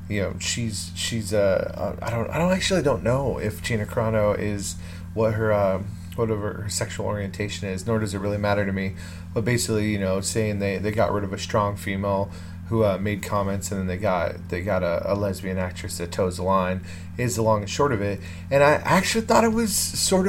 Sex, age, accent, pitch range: male, 30-49, American, 90-120 Hz